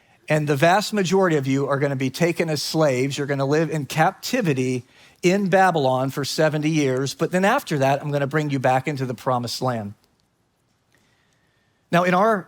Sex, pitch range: male, 140-185 Hz